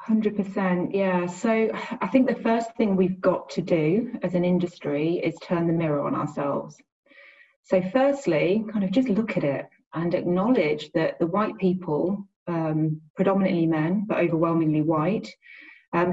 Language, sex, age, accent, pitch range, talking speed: English, female, 30-49, British, 170-210 Hz, 155 wpm